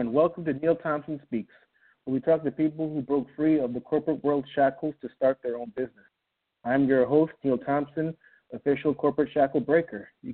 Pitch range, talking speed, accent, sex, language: 125-150 Hz, 195 wpm, American, male, English